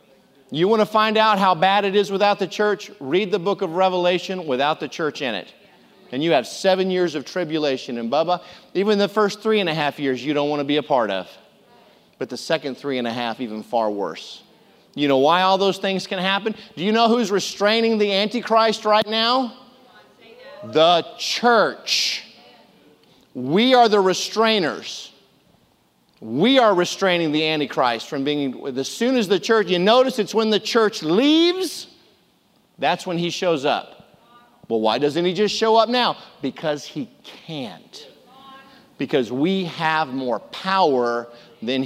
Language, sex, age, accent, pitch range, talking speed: English, male, 40-59, American, 150-220 Hz, 175 wpm